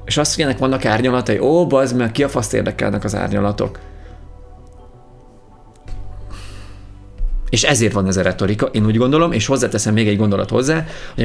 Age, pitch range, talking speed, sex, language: 30-49, 90-110 Hz, 165 wpm, male, Hungarian